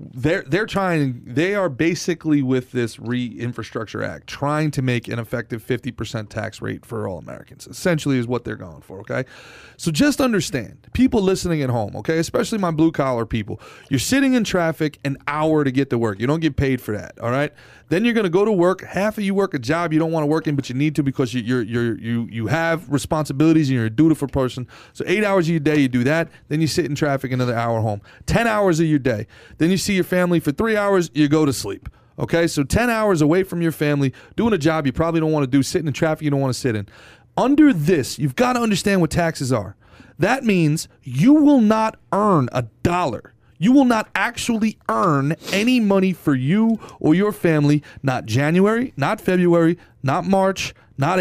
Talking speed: 225 wpm